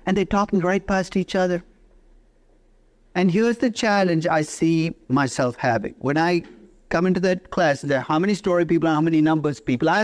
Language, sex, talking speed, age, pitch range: Dutch, male, 190 wpm, 50-69, 145-220 Hz